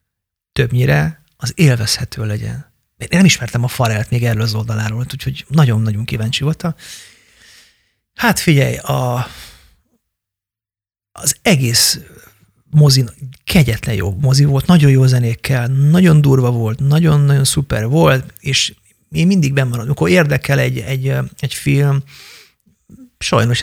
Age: 30-49